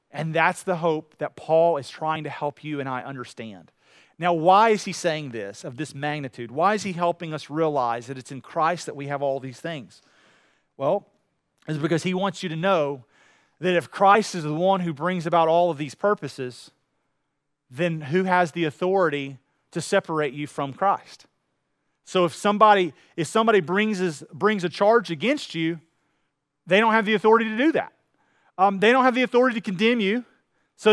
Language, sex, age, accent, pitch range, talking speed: English, male, 40-59, American, 150-225 Hz, 190 wpm